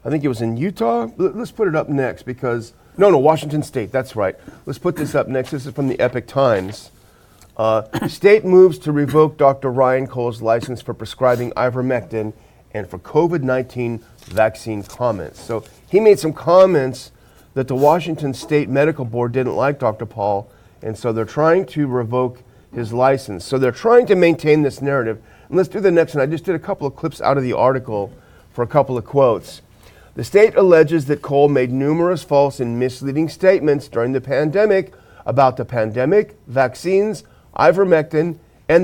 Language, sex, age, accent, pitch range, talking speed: English, male, 40-59, American, 115-155 Hz, 180 wpm